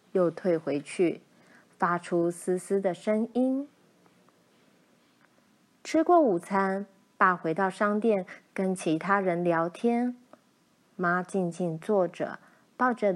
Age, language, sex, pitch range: 30-49, Chinese, female, 175-245 Hz